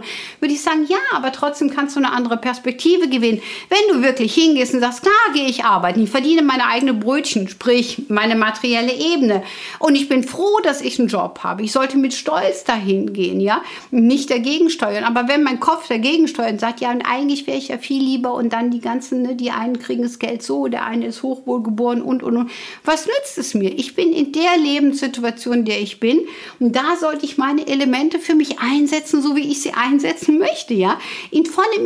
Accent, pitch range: German, 225-300 Hz